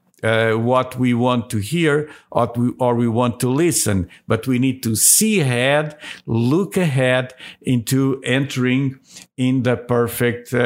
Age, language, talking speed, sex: 50-69, English, 140 wpm, male